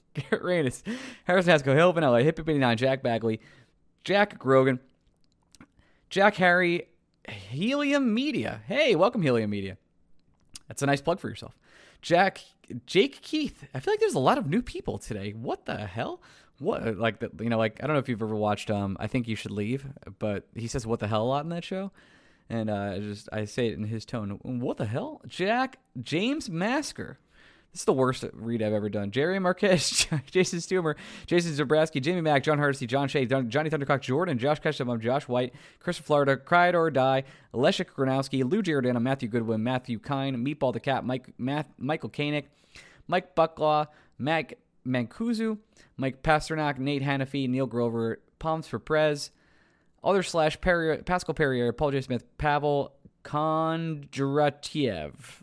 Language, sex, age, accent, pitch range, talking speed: English, male, 20-39, American, 120-165 Hz, 170 wpm